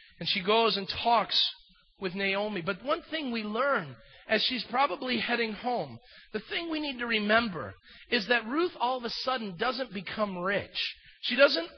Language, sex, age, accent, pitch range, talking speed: English, male, 40-59, American, 210-270 Hz, 180 wpm